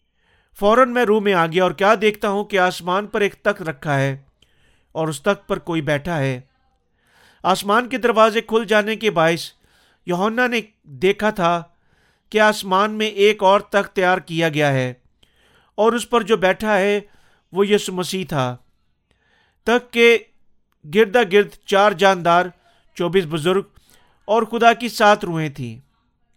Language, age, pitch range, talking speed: Urdu, 50-69, 170-215 Hz, 155 wpm